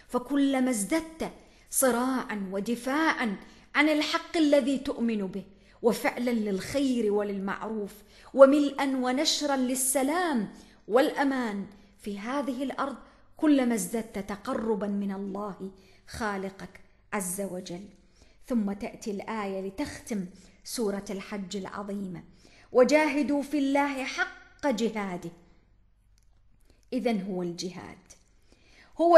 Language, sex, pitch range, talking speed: English, female, 195-275 Hz, 90 wpm